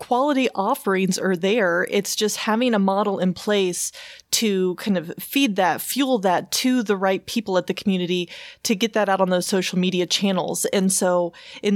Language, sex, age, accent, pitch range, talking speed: English, female, 20-39, American, 185-220 Hz, 190 wpm